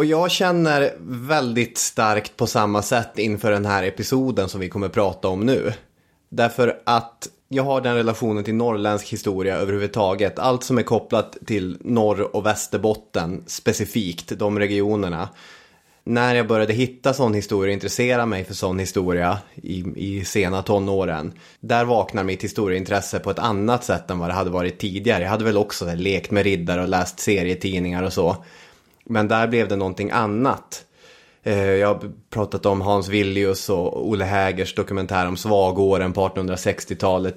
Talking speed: 160 wpm